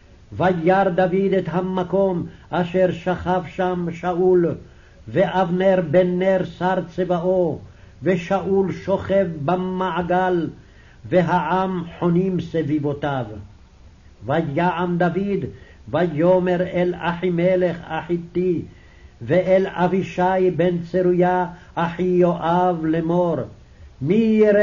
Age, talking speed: 60-79, 60 wpm